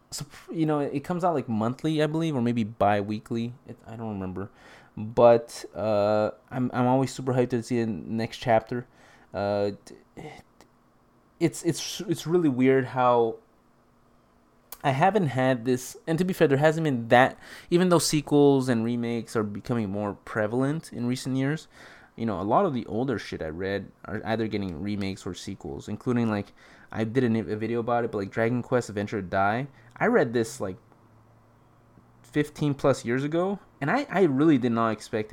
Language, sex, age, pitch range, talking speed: English, male, 20-39, 110-145 Hz, 175 wpm